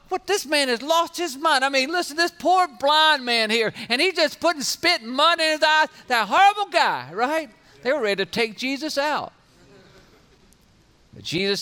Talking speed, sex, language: 195 wpm, male, English